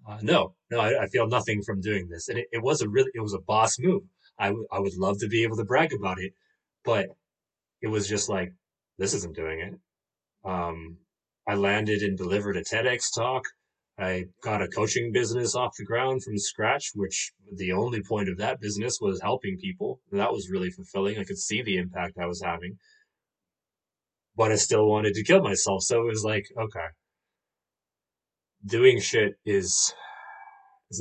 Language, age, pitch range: English, 20-39, 95-130 Hz